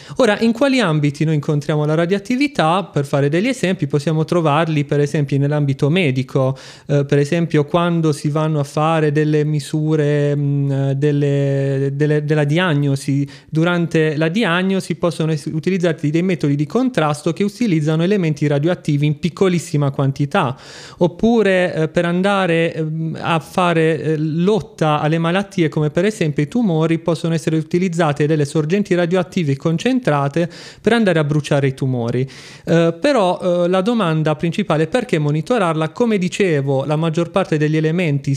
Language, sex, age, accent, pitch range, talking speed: Italian, male, 30-49, native, 150-180 Hz, 145 wpm